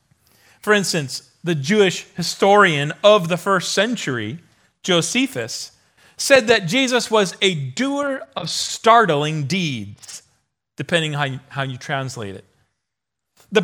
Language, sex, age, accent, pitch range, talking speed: English, male, 40-59, American, 160-245 Hz, 115 wpm